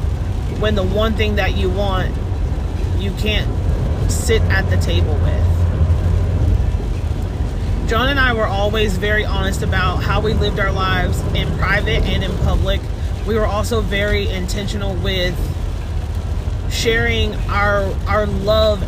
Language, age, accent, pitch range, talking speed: English, 30-49, American, 80-95 Hz, 135 wpm